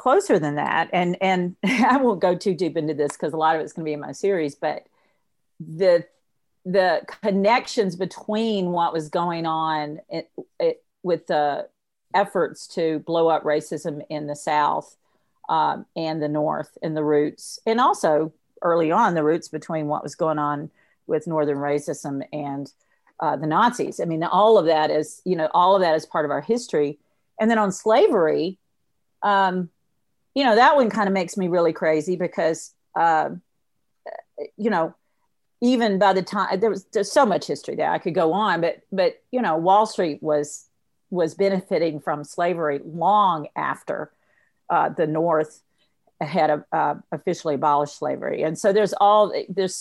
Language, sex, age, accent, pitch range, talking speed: English, female, 50-69, American, 155-195 Hz, 175 wpm